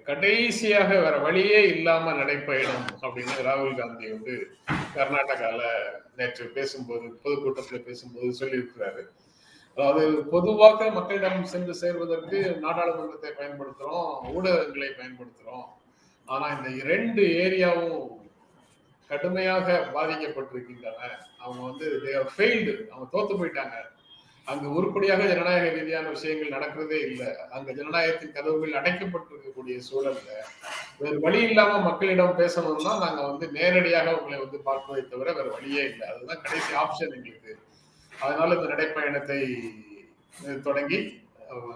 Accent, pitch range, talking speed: native, 135-175 Hz, 90 wpm